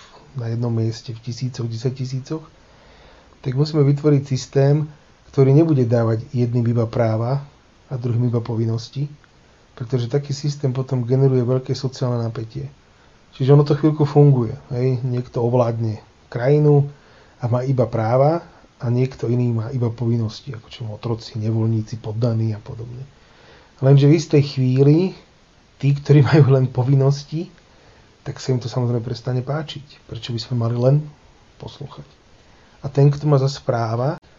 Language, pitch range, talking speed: Slovak, 115-140 Hz, 145 wpm